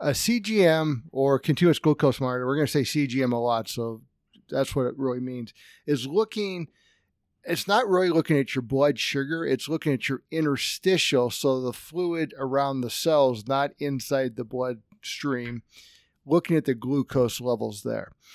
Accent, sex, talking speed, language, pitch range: American, male, 165 wpm, English, 125-145 Hz